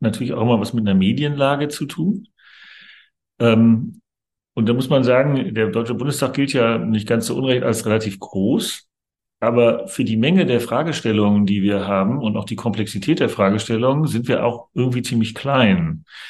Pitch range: 115-135 Hz